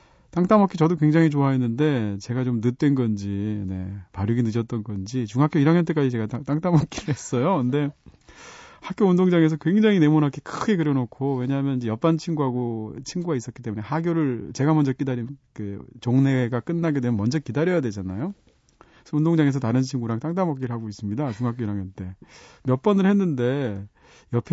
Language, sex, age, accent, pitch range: Korean, male, 40-59, native, 110-155 Hz